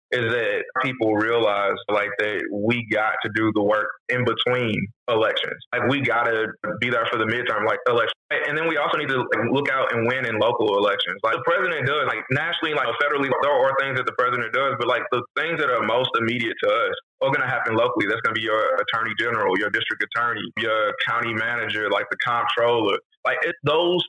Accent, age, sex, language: American, 20-39, male, English